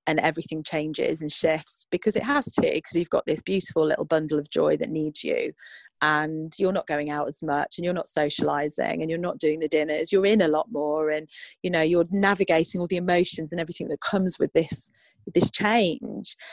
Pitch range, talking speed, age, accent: 150-180 Hz, 215 wpm, 30-49, British